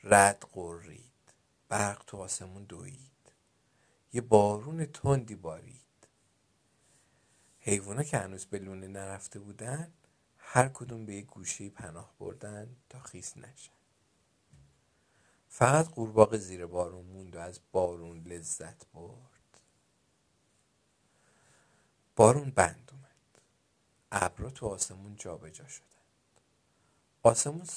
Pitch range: 95-135 Hz